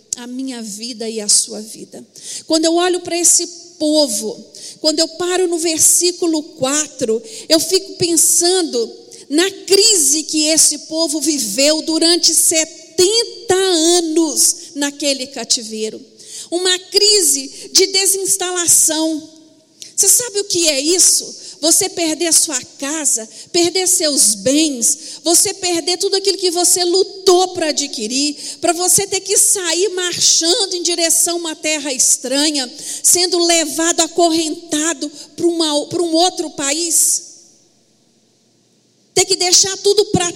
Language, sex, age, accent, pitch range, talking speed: Portuguese, female, 50-69, Brazilian, 305-370 Hz, 125 wpm